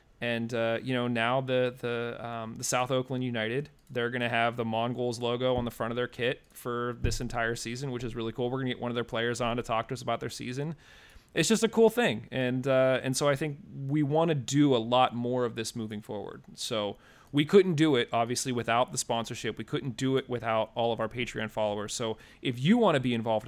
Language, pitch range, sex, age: English, 115-135 Hz, male, 30-49